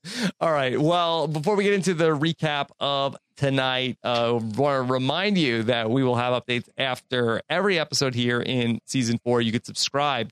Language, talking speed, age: English, 180 wpm, 30-49